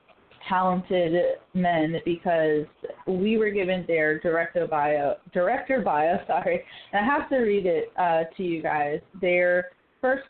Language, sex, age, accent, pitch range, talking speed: English, female, 20-39, American, 165-215 Hz, 135 wpm